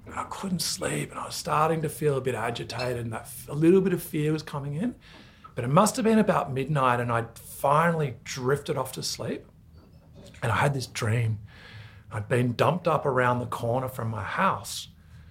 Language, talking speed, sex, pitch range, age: English, 205 wpm, male, 110-135 Hz, 30-49